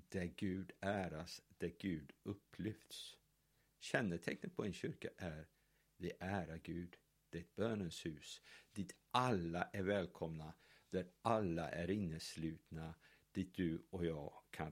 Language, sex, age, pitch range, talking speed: Swedish, male, 50-69, 85-110 Hz, 130 wpm